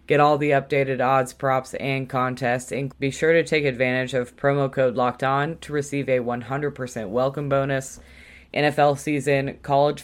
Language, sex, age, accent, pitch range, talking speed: English, female, 20-39, American, 125-145 Hz, 165 wpm